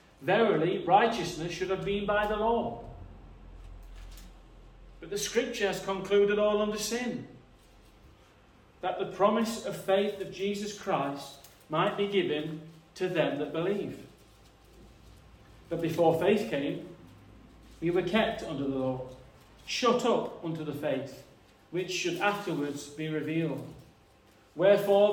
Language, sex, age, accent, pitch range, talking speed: English, male, 40-59, British, 155-205 Hz, 125 wpm